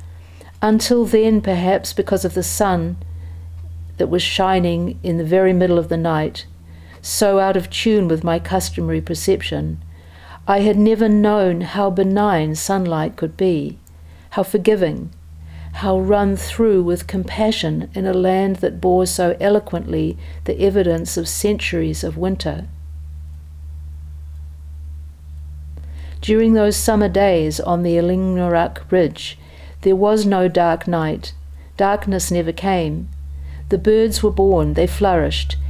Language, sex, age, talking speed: English, female, 50-69, 130 wpm